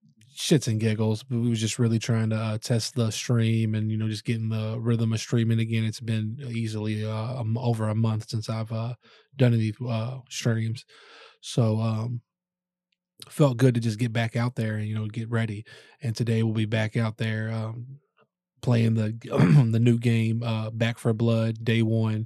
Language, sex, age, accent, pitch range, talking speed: English, male, 20-39, American, 110-125 Hz, 195 wpm